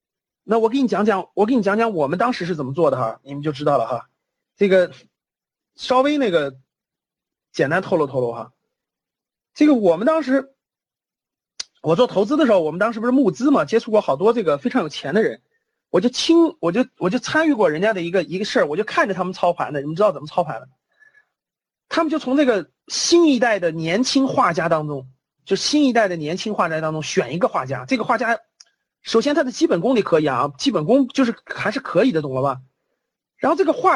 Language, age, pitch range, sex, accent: Chinese, 30-49, 180-275 Hz, male, native